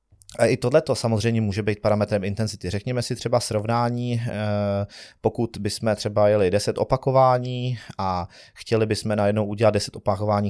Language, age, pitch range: Czech, 30-49, 100-120 Hz